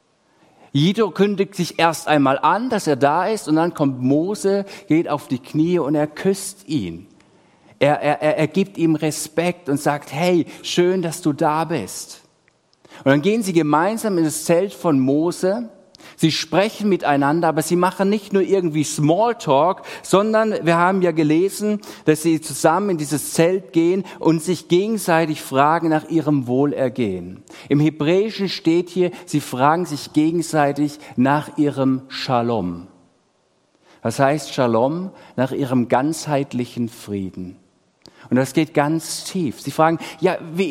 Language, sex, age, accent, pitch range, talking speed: German, male, 50-69, German, 145-190 Hz, 150 wpm